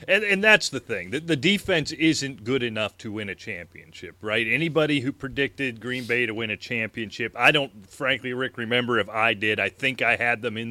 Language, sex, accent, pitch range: English, male, American, 110-140 Hz